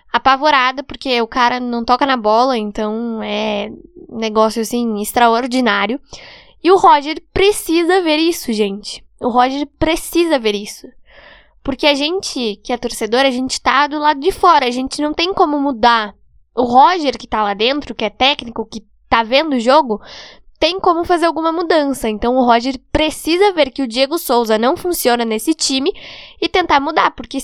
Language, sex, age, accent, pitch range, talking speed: Portuguese, female, 10-29, Brazilian, 235-300 Hz, 175 wpm